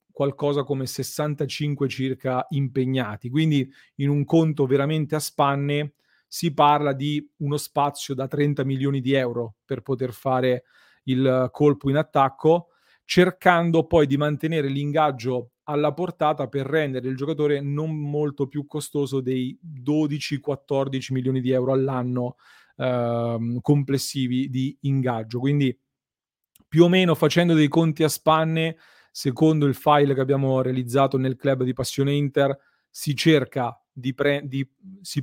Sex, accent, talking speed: male, native, 135 wpm